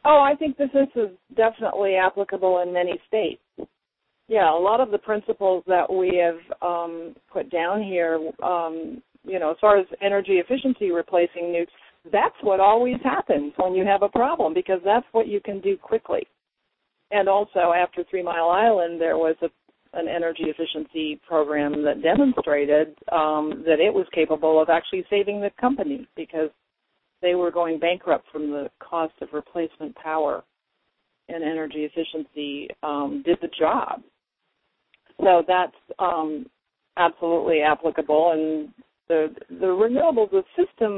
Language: English